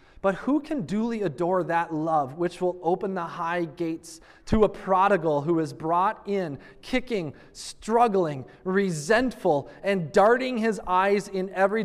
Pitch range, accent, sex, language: 150-210 Hz, American, male, English